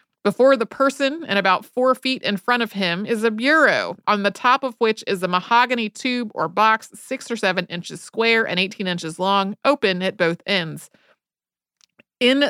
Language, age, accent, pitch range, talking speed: English, 30-49, American, 185-245 Hz, 185 wpm